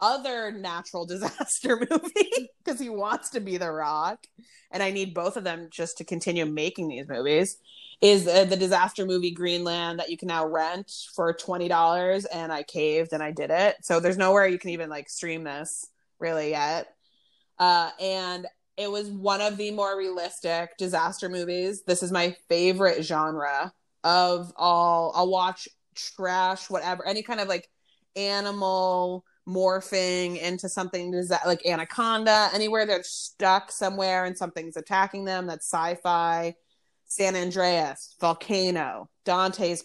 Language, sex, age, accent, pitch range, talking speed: English, female, 20-39, American, 170-195 Hz, 155 wpm